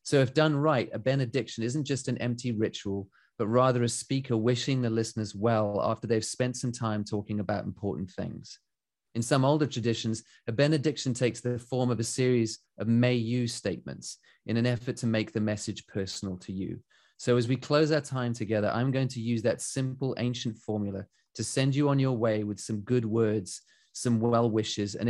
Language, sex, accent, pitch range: English, male, British, 110-130 Hz